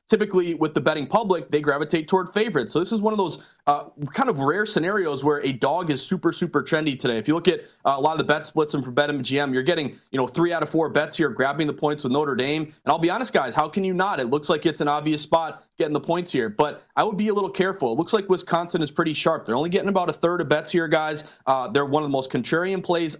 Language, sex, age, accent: English, male, 30-49, American